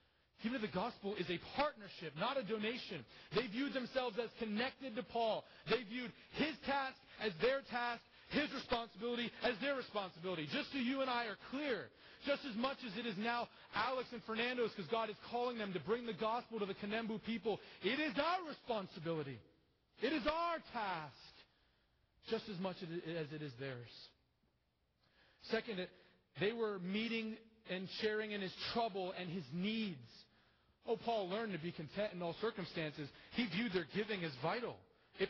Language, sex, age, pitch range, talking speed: English, male, 30-49, 165-230 Hz, 170 wpm